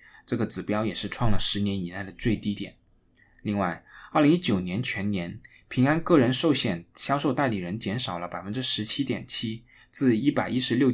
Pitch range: 105-130 Hz